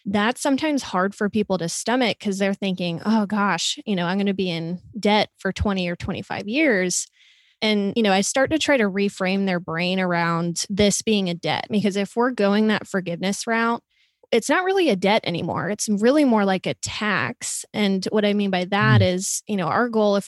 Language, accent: English, American